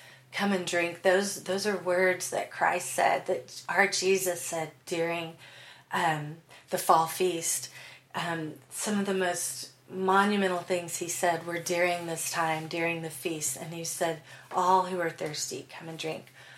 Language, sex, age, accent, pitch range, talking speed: English, female, 30-49, American, 155-180 Hz, 165 wpm